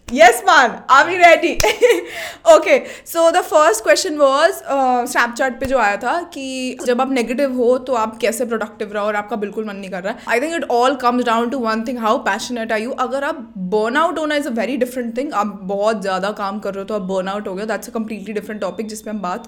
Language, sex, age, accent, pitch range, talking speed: Hindi, female, 20-39, native, 220-270 Hz, 230 wpm